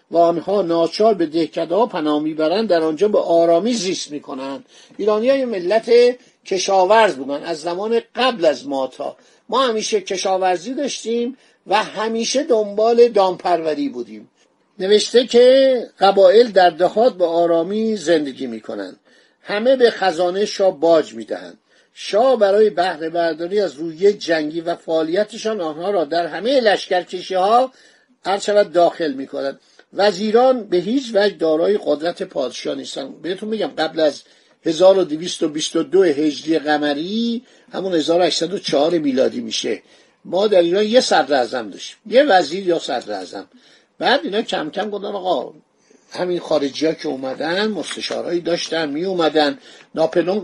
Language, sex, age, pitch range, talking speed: Persian, male, 50-69, 160-215 Hz, 130 wpm